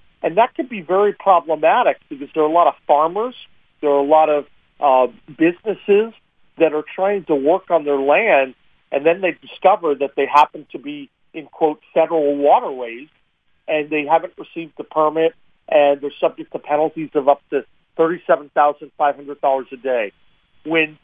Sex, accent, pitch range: male, American, 145-180 Hz